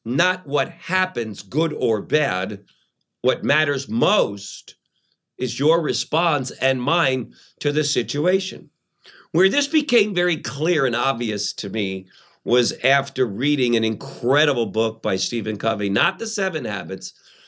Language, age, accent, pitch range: English, 50-69, American, 105-150 Hz